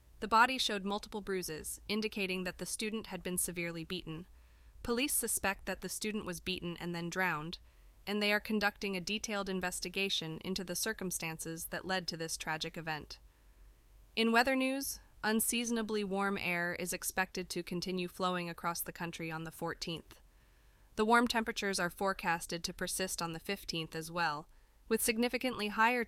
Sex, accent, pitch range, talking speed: female, American, 165-205 Hz, 165 wpm